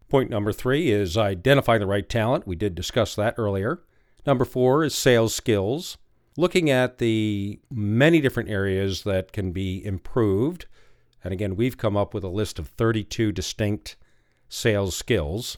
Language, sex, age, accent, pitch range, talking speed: English, male, 50-69, American, 95-120 Hz, 160 wpm